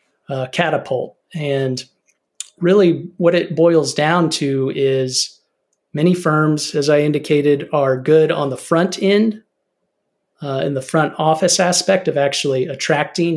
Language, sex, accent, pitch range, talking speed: English, male, American, 135-160 Hz, 135 wpm